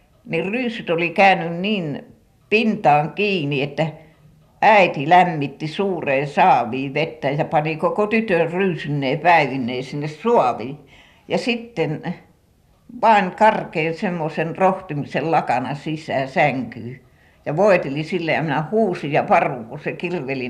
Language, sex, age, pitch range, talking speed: Finnish, female, 60-79, 135-180 Hz, 115 wpm